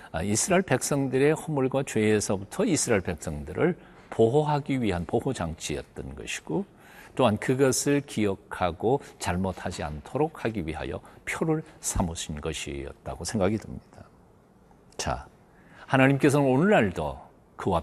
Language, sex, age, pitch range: Korean, male, 50-69, 90-145 Hz